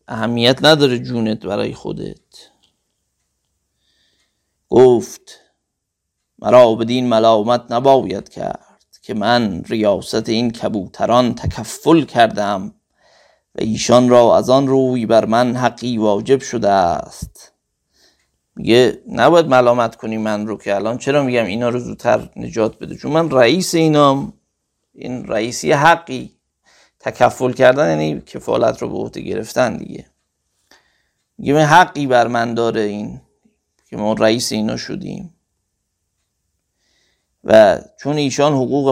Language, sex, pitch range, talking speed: Persian, male, 110-140 Hz, 120 wpm